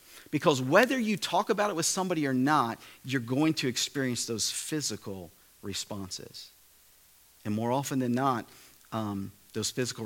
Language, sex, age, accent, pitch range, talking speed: English, male, 40-59, American, 115-165 Hz, 150 wpm